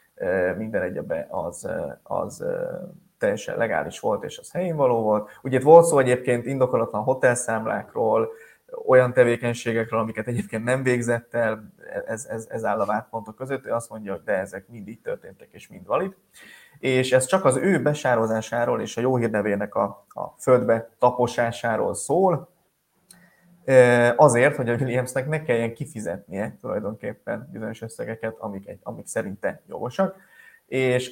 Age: 20-39